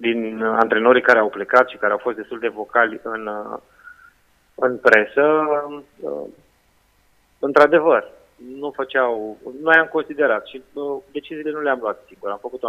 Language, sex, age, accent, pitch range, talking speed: Romanian, male, 30-49, native, 115-150 Hz, 145 wpm